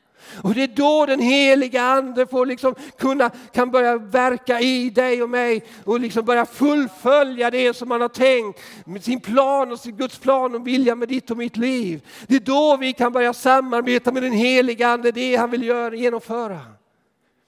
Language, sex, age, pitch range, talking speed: Swedish, male, 50-69, 205-255 Hz, 190 wpm